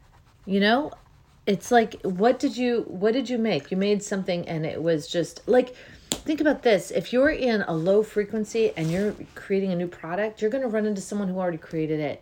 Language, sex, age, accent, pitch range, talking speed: English, female, 40-59, American, 155-205 Hz, 215 wpm